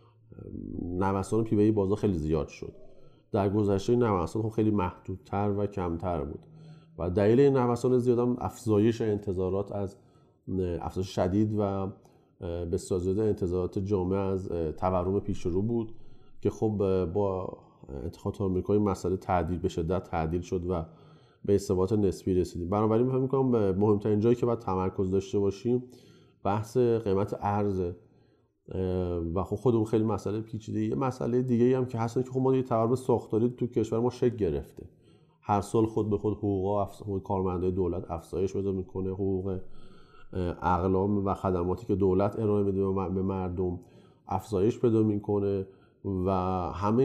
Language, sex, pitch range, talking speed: Persian, male, 95-115 Hz, 155 wpm